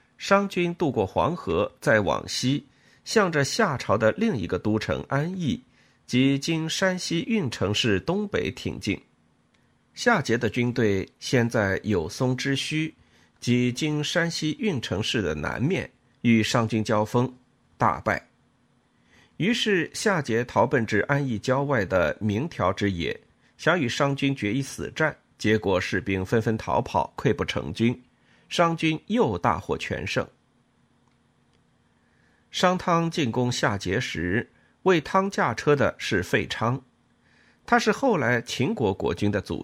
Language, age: Chinese, 50-69